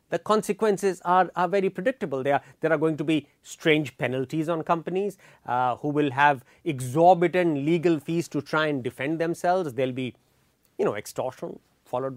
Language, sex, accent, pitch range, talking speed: English, male, Indian, 155-210 Hz, 170 wpm